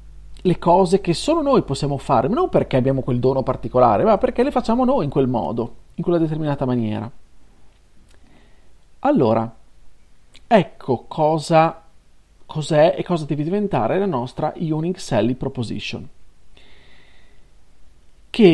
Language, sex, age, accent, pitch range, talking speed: Italian, male, 40-59, native, 120-190 Hz, 125 wpm